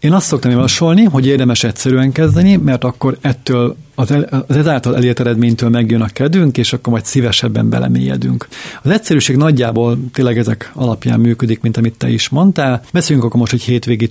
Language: Hungarian